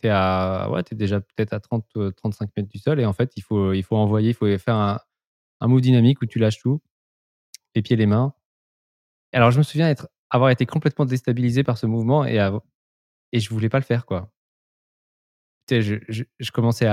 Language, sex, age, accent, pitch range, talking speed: French, male, 20-39, French, 100-130 Hz, 210 wpm